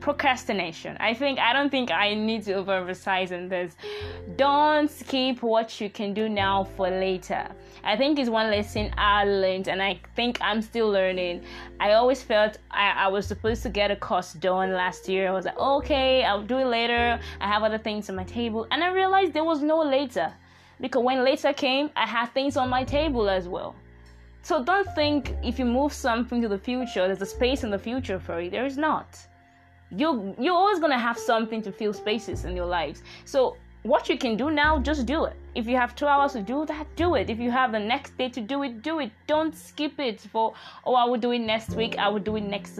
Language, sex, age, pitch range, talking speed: English, female, 20-39, 200-265 Hz, 225 wpm